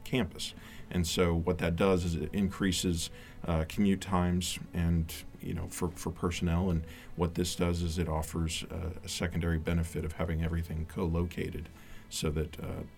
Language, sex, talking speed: English, male, 170 wpm